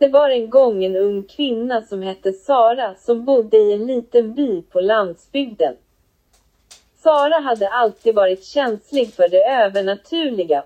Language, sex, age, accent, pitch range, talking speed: Swedish, female, 30-49, native, 200-290 Hz, 145 wpm